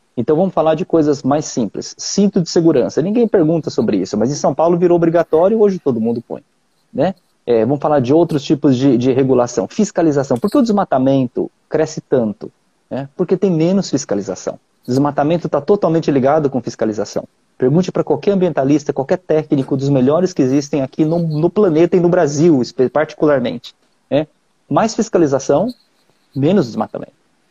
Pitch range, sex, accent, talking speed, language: 135-170 Hz, male, Brazilian, 165 wpm, Portuguese